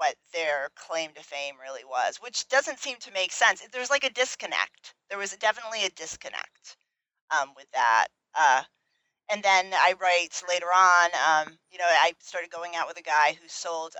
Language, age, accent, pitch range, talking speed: English, 30-49, American, 155-210 Hz, 190 wpm